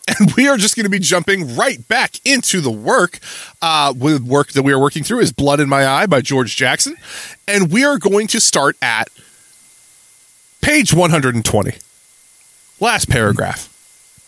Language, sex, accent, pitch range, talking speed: English, male, American, 140-200 Hz, 170 wpm